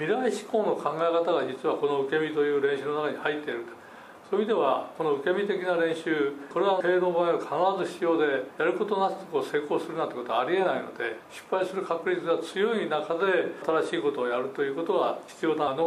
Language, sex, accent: Japanese, male, native